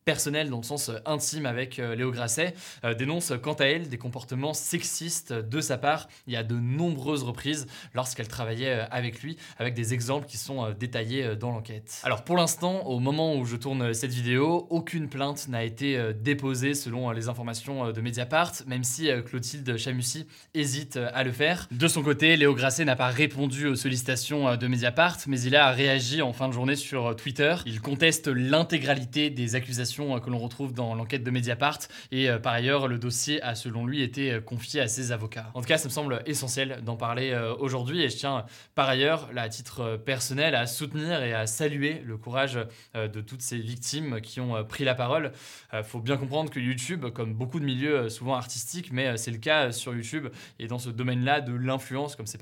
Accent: French